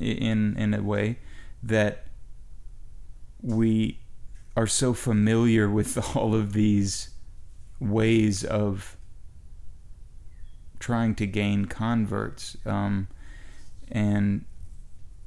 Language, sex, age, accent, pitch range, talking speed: English, male, 30-49, American, 100-110 Hz, 85 wpm